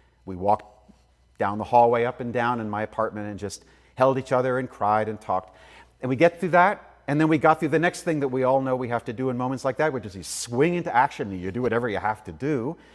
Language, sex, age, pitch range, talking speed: English, male, 40-59, 100-140 Hz, 275 wpm